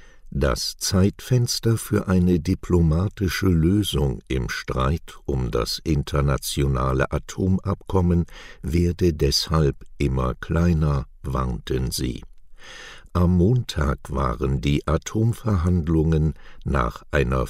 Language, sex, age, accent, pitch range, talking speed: German, male, 60-79, German, 70-95 Hz, 85 wpm